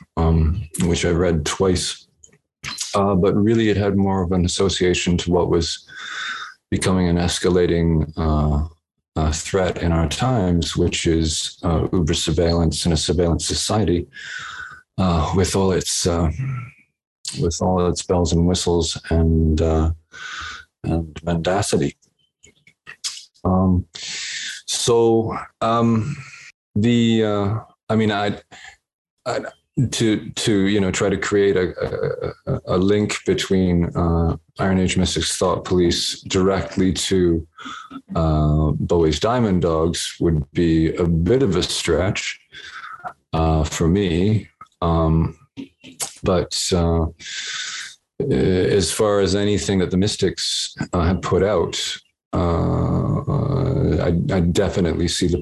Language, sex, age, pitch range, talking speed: English, male, 40-59, 80-95 Hz, 120 wpm